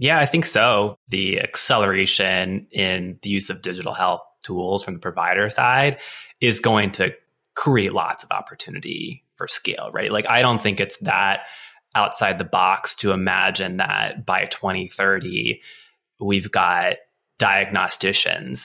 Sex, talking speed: male, 140 wpm